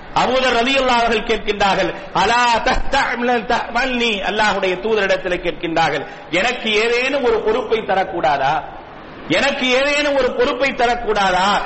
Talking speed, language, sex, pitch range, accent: 150 wpm, English, male, 205-255 Hz, Indian